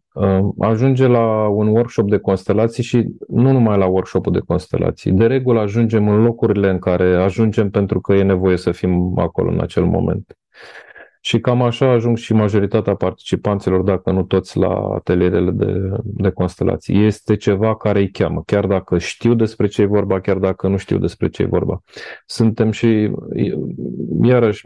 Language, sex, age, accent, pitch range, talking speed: Romanian, male, 30-49, native, 95-115 Hz, 170 wpm